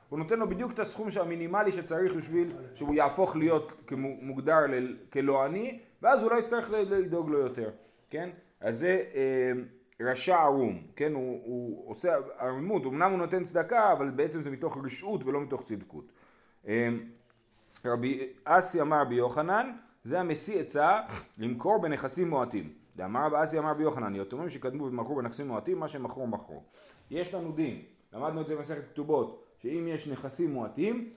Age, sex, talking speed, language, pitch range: 30-49, male, 160 wpm, Hebrew, 125-180 Hz